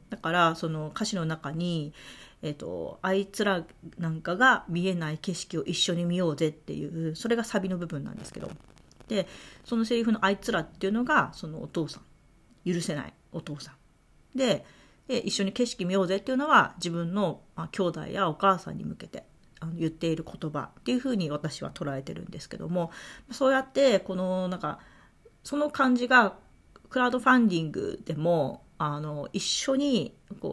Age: 40-59